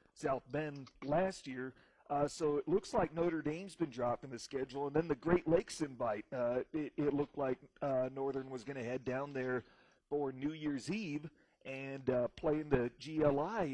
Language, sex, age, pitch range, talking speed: English, male, 40-59, 135-155 Hz, 190 wpm